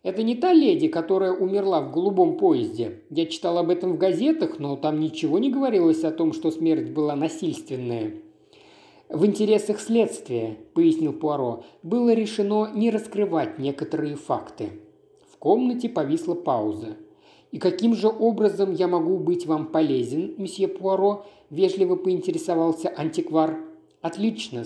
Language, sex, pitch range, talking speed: Russian, male, 165-255 Hz, 135 wpm